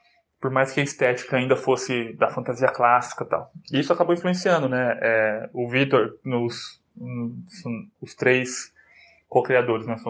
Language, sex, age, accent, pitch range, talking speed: Portuguese, male, 20-39, Brazilian, 125-155 Hz, 165 wpm